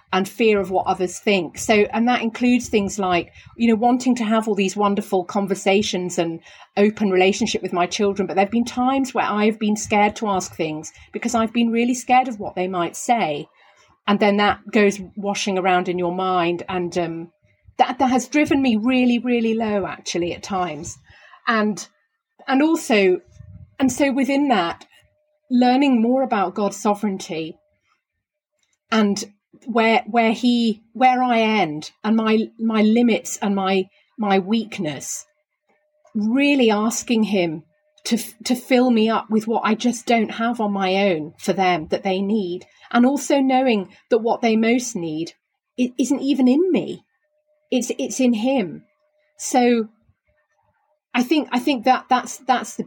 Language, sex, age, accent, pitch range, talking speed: English, female, 40-59, British, 195-255 Hz, 165 wpm